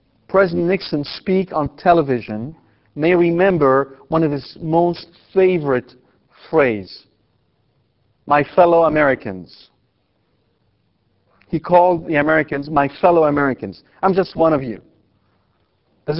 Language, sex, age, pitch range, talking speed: English, male, 50-69, 140-185 Hz, 105 wpm